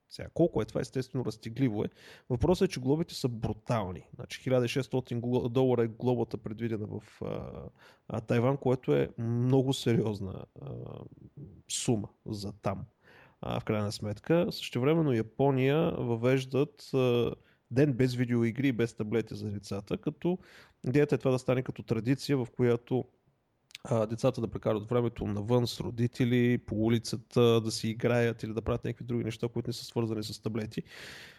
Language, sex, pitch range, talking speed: Bulgarian, male, 115-135 Hz, 155 wpm